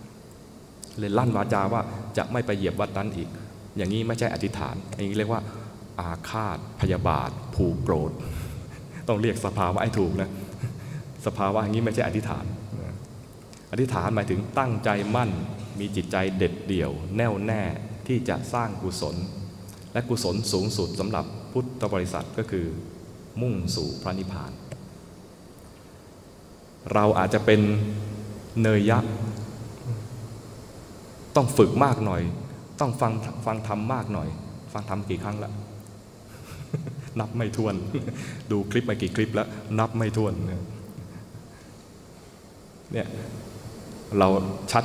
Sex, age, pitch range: male, 20-39, 95-110 Hz